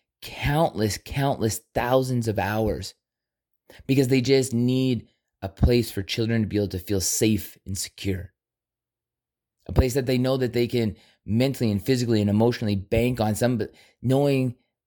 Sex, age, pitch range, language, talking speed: male, 30-49, 105-125 Hz, English, 155 wpm